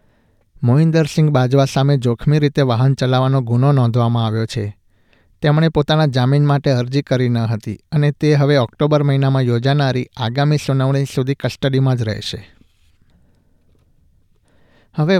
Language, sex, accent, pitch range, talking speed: Gujarati, male, native, 115-145 Hz, 125 wpm